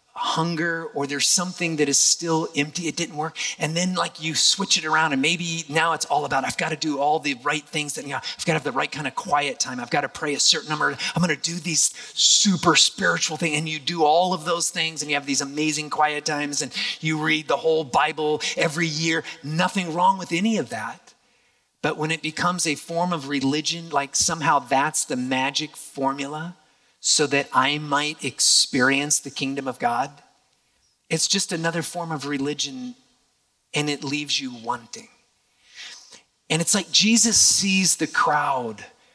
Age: 30-49